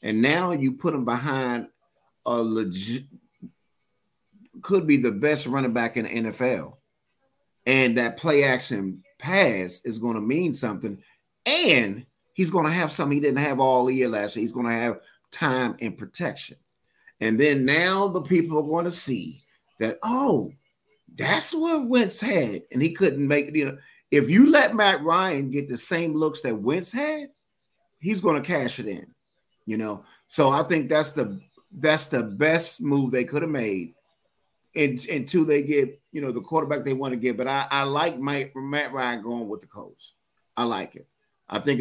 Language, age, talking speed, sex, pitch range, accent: English, 30-49, 185 wpm, male, 125-165 Hz, American